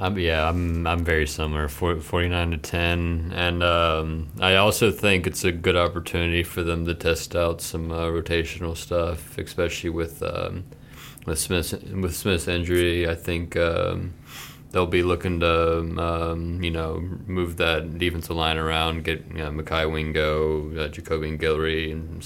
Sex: male